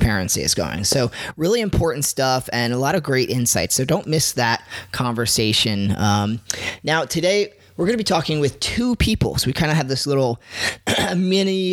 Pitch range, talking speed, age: 125-170 Hz, 185 wpm, 30-49